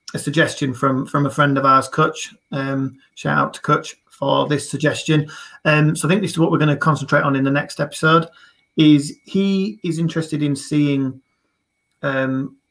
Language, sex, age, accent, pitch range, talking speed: English, male, 30-49, British, 135-155 Hz, 190 wpm